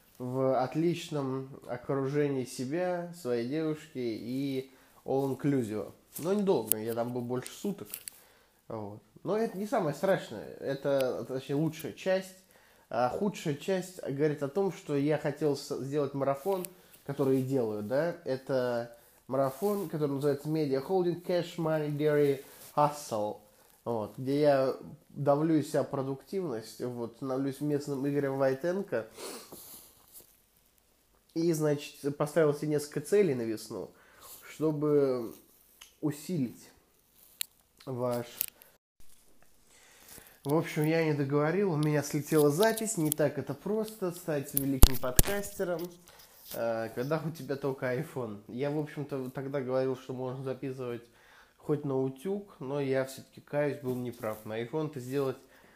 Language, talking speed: Russian, 125 wpm